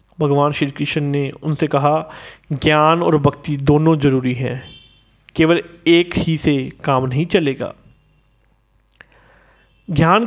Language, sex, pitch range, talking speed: Hindi, male, 150-195 Hz, 115 wpm